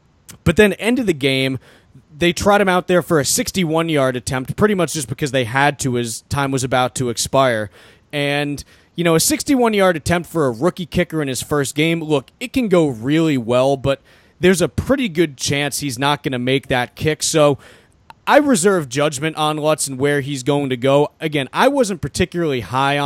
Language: English